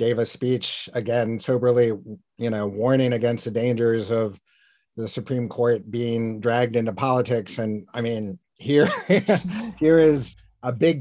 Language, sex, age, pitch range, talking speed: English, male, 50-69, 110-130 Hz, 145 wpm